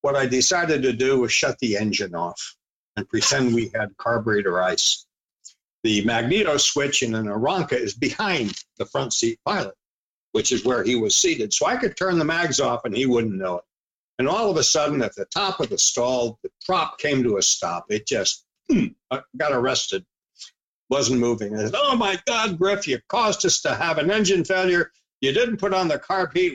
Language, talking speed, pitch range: English, 205 wpm, 120-200 Hz